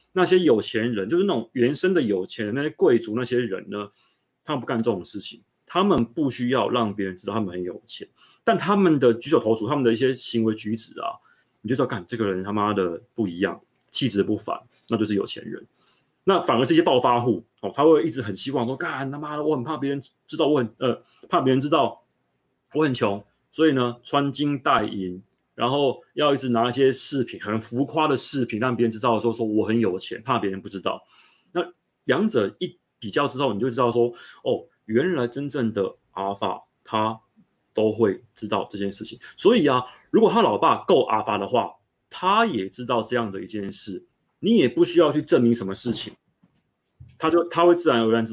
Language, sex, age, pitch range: Chinese, male, 30-49, 110-145 Hz